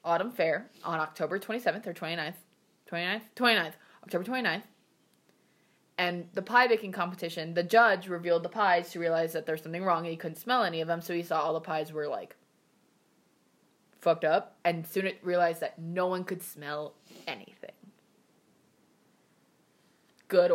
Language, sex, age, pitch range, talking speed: English, female, 20-39, 170-205 Hz, 160 wpm